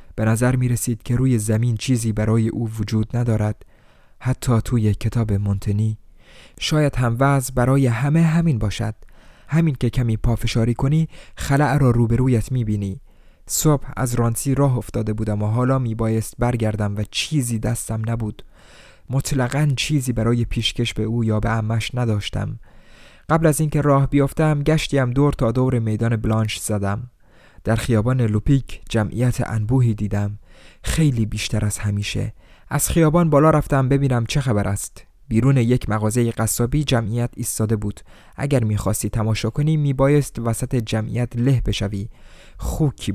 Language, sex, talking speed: Persian, male, 145 wpm